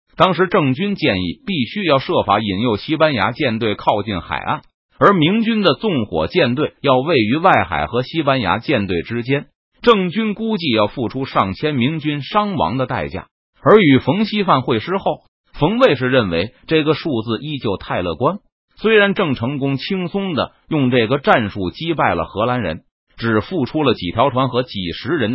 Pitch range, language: 110-175 Hz, Chinese